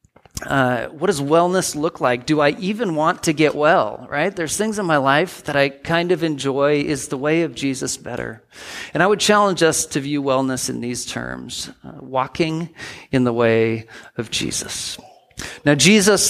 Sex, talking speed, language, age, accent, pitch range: male, 185 wpm, English, 40-59, American, 125-155 Hz